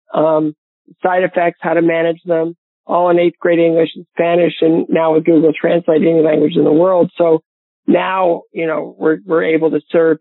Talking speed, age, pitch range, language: 195 wpm, 50-69, 160-180 Hz, English